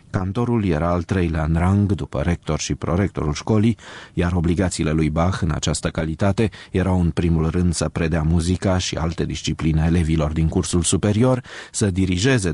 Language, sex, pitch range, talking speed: Romanian, male, 80-100 Hz, 165 wpm